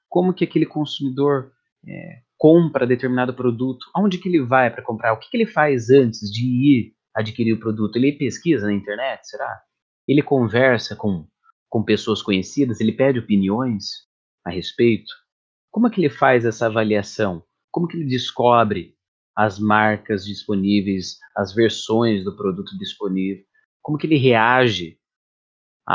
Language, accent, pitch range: Portuguese, Brazilian, 105-145 Hz